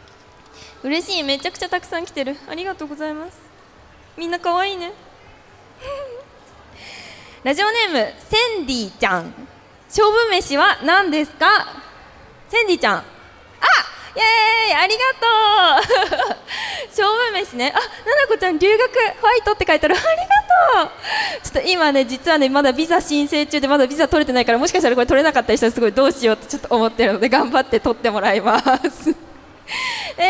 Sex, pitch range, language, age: female, 245-385 Hz, Japanese, 20-39